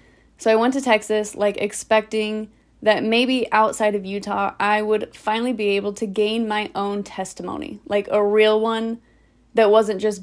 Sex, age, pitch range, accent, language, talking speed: female, 20-39, 195-225 Hz, American, English, 170 wpm